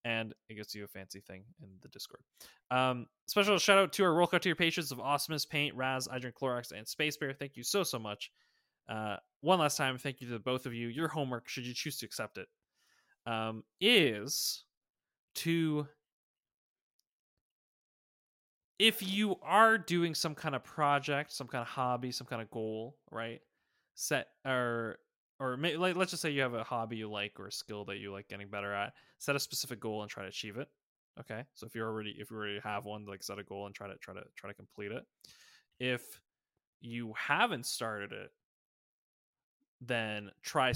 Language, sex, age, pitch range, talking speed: English, male, 20-39, 105-145 Hz, 195 wpm